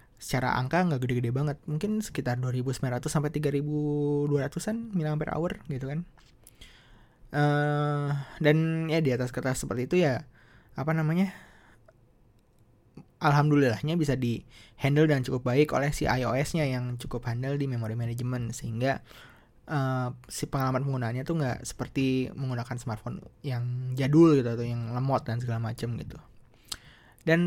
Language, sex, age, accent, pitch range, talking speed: Indonesian, male, 20-39, native, 120-145 Hz, 140 wpm